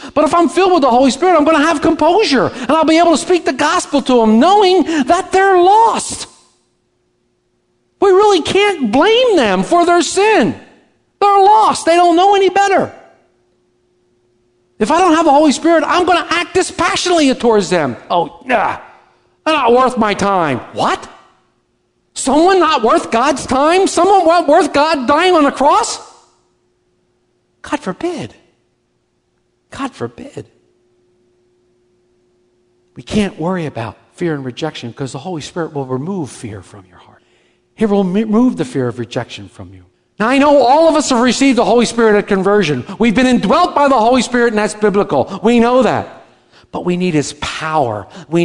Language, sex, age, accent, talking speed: English, male, 50-69, American, 170 wpm